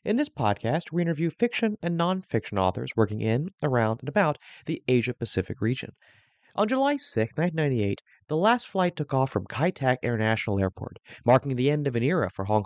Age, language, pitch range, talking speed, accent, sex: 30-49, English, 115-160 Hz, 185 wpm, American, male